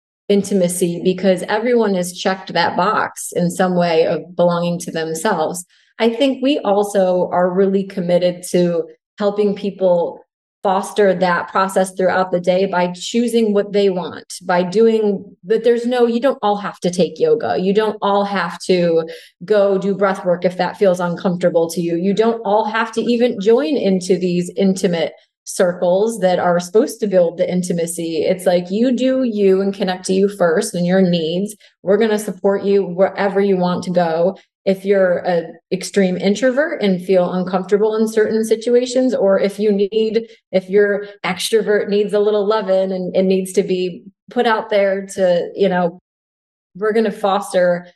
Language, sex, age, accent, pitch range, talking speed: English, female, 30-49, American, 180-210 Hz, 175 wpm